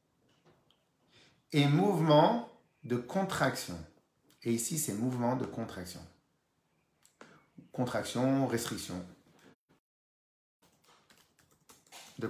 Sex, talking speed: male, 65 wpm